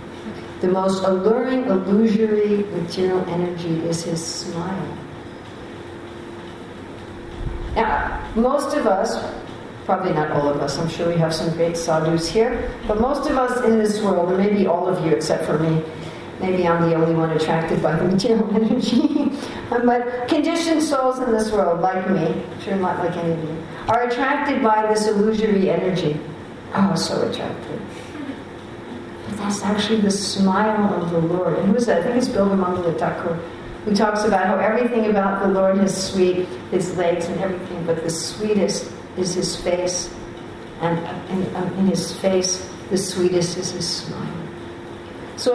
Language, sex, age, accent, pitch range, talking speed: English, female, 60-79, American, 170-215 Hz, 160 wpm